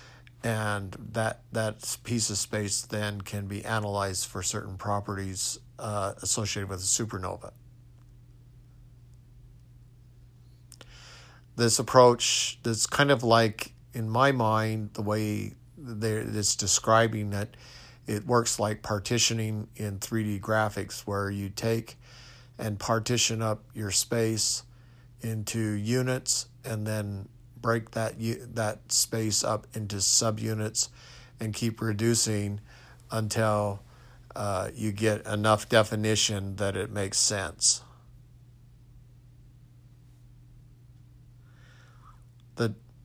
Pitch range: 110-120 Hz